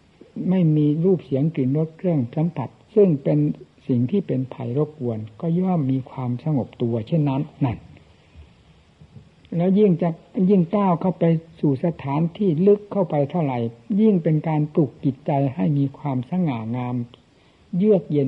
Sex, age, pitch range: male, 60-79, 120-165 Hz